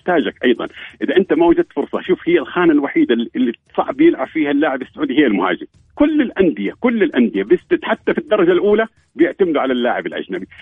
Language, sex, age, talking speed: Arabic, male, 50-69, 170 wpm